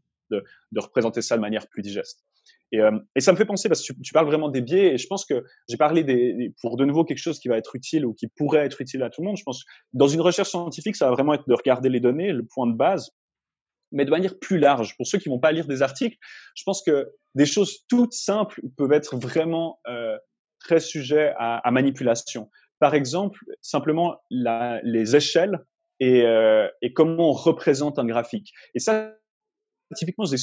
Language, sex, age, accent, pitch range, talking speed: French, male, 30-49, French, 135-200 Hz, 225 wpm